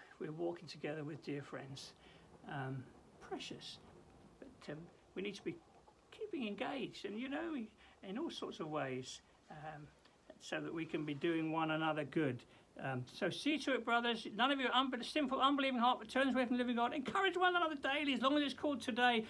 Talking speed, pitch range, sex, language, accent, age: 200 wpm, 150-245 Hz, male, English, British, 60-79